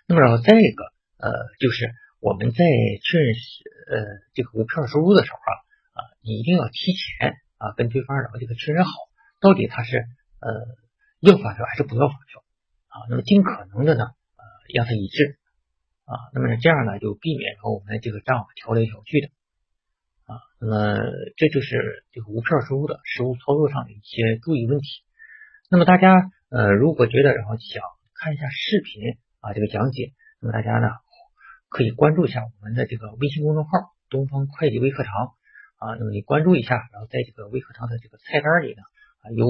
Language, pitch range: Chinese, 115-150 Hz